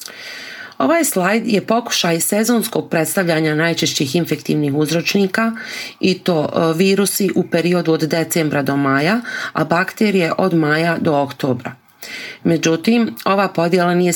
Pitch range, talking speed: 155-210 Hz, 120 wpm